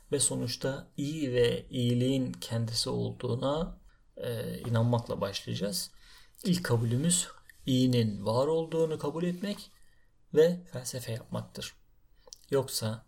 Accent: native